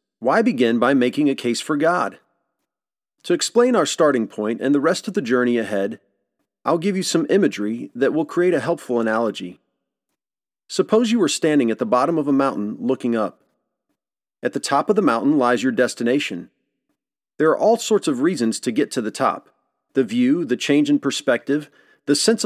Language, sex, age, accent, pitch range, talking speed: English, male, 40-59, American, 120-180 Hz, 190 wpm